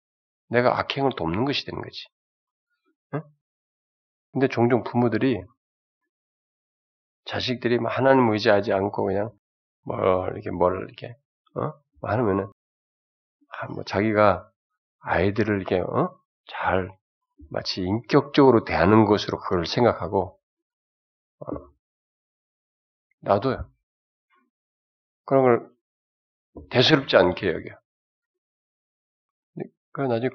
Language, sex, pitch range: Korean, male, 100-160 Hz